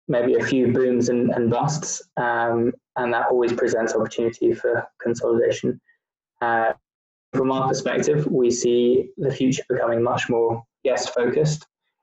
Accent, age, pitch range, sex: British, 20-39, 115-145 Hz, male